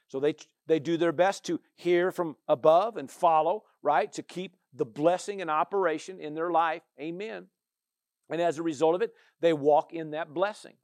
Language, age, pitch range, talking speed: English, 50-69, 155-195 Hz, 190 wpm